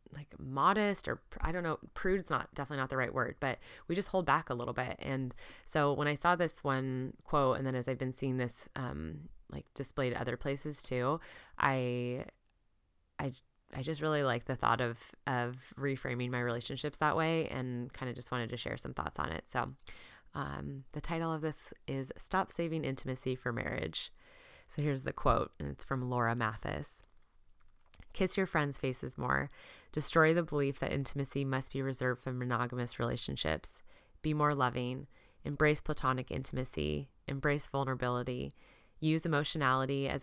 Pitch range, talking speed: 120-145 Hz, 175 wpm